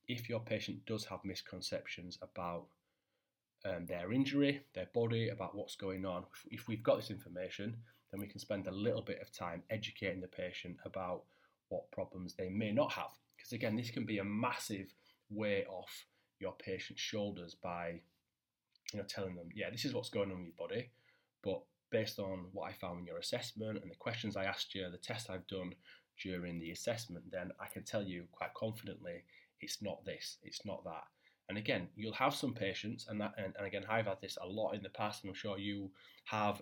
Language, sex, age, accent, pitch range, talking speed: English, male, 20-39, British, 90-110 Hz, 205 wpm